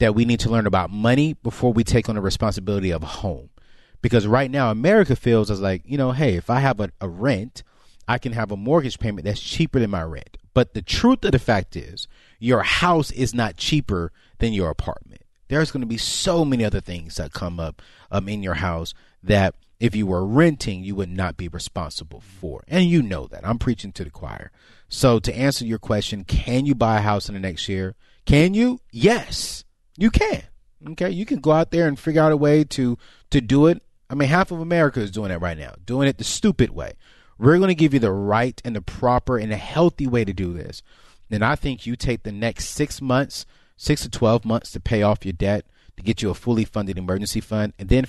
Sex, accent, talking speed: male, American, 235 wpm